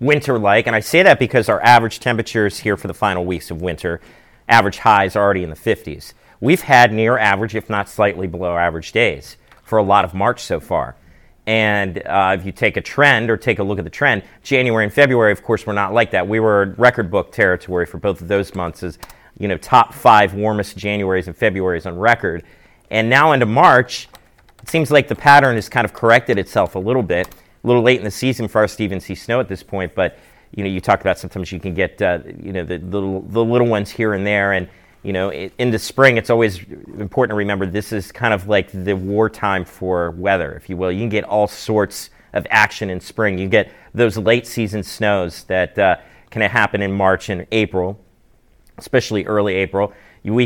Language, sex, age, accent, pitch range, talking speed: English, male, 40-59, American, 95-115 Hz, 225 wpm